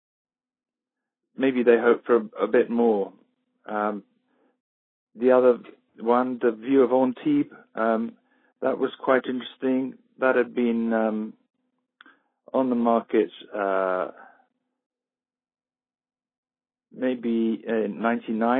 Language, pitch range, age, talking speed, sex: English, 115-140 Hz, 50-69, 105 wpm, male